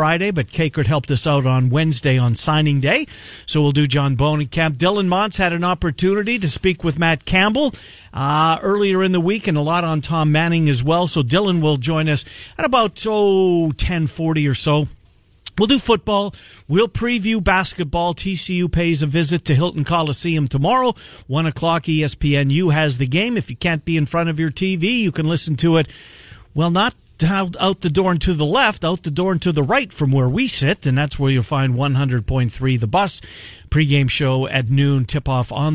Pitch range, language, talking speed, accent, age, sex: 140-185 Hz, English, 200 wpm, American, 50-69, male